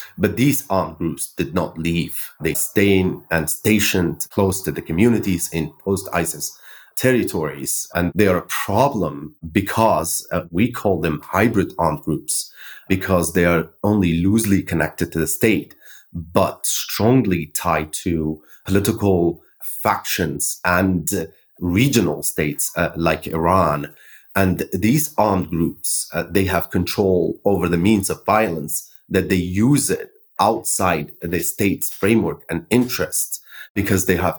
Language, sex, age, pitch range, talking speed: English, male, 30-49, 85-100 Hz, 140 wpm